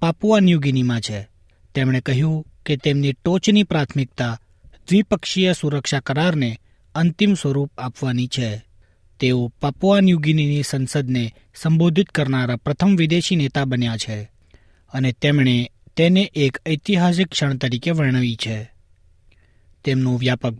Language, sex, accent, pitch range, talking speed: Gujarati, male, native, 120-155 Hz, 105 wpm